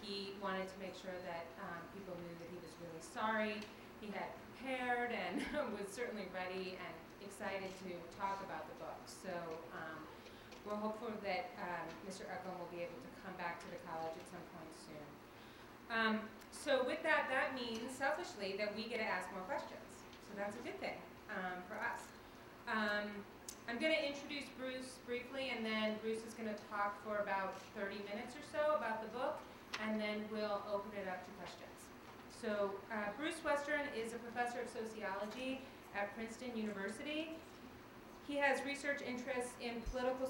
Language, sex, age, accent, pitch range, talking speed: English, female, 30-49, American, 195-245 Hz, 180 wpm